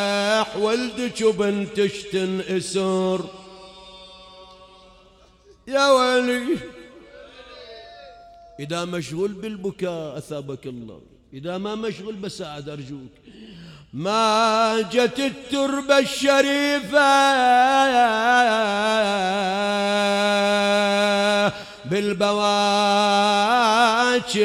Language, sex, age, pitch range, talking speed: Arabic, male, 40-59, 200-275 Hz, 50 wpm